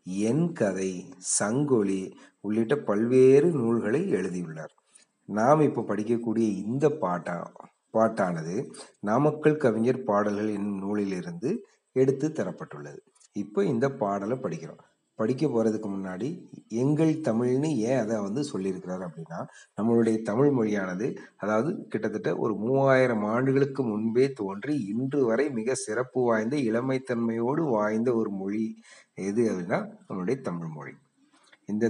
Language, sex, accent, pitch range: Tamil, male, native, 100-135 Hz